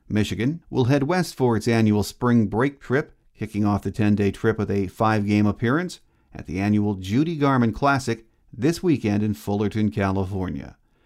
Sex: male